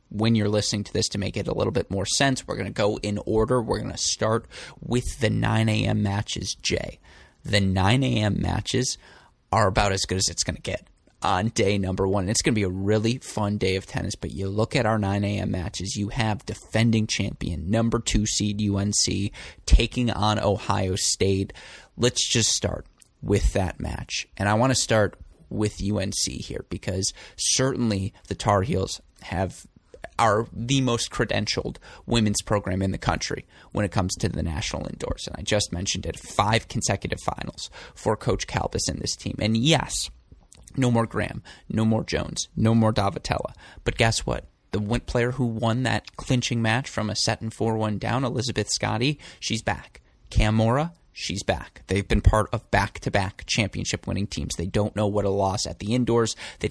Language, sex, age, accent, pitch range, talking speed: English, male, 20-39, American, 95-115 Hz, 185 wpm